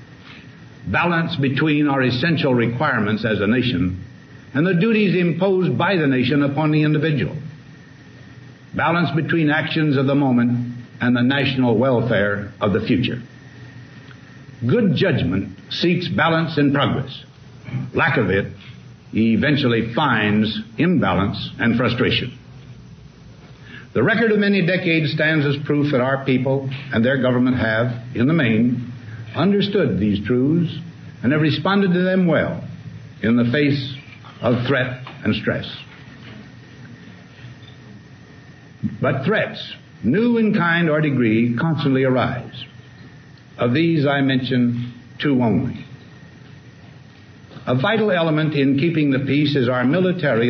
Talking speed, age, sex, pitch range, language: 125 wpm, 60-79, male, 125-155 Hz, English